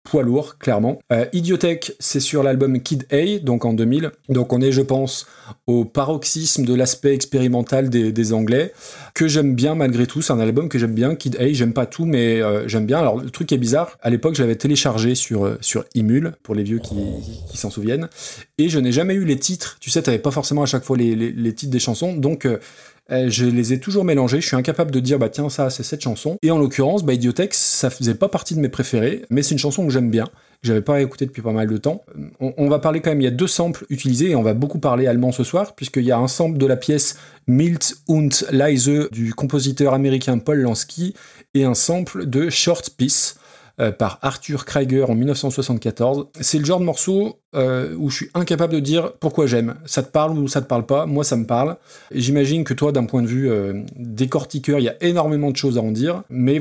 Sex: male